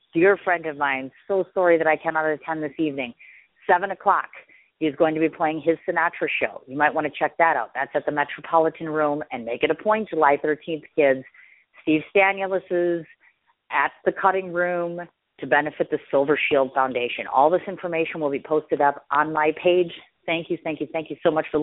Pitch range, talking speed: 135-165 Hz, 205 wpm